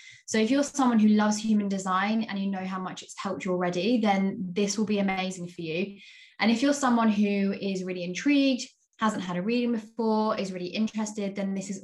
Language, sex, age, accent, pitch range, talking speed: English, female, 20-39, British, 180-220 Hz, 220 wpm